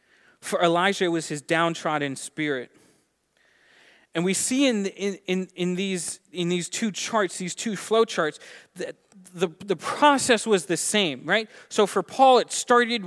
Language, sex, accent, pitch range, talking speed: English, male, American, 155-195 Hz, 170 wpm